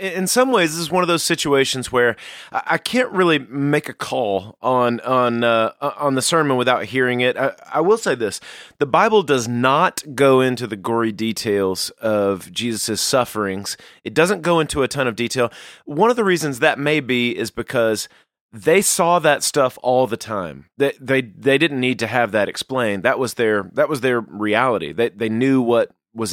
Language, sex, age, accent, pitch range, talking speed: English, male, 30-49, American, 115-155 Hz, 200 wpm